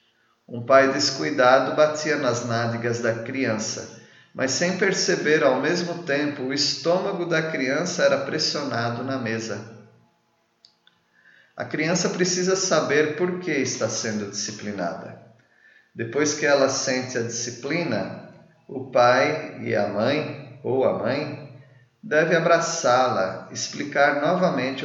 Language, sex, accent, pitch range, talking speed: Portuguese, male, Brazilian, 120-150 Hz, 120 wpm